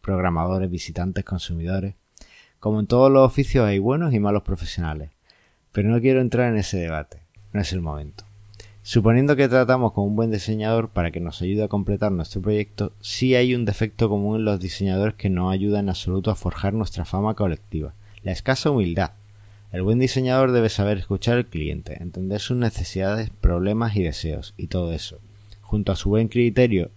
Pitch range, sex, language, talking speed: 95-110 Hz, male, Spanish, 180 wpm